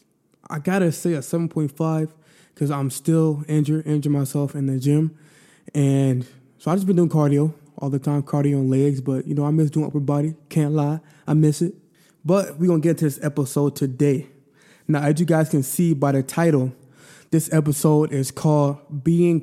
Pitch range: 140-170 Hz